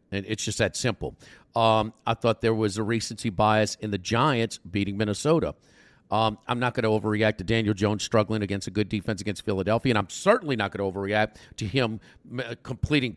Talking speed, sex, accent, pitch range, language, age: 200 wpm, male, American, 110-150 Hz, English, 50-69